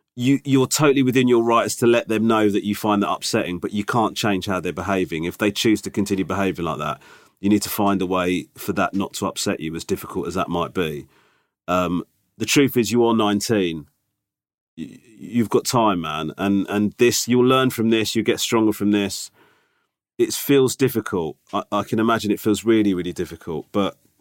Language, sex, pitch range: English, male, 95-110 Hz